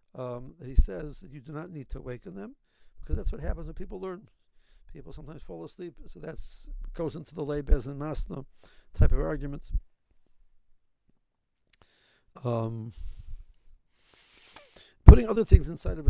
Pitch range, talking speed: 115-155 Hz, 150 wpm